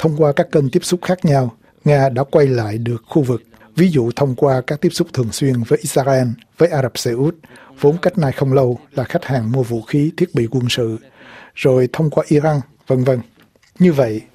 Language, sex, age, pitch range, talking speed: Vietnamese, male, 60-79, 125-155 Hz, 225 wpm